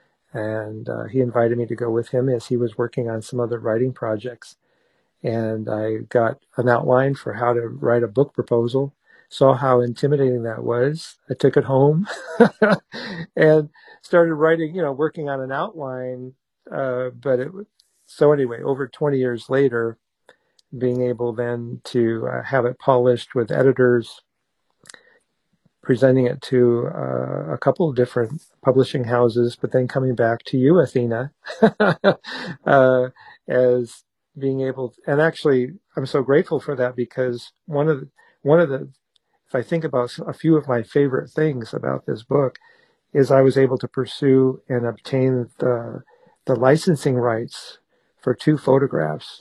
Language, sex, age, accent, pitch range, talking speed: English, male, 50-69, American, 120-140 Hz, 160 wpm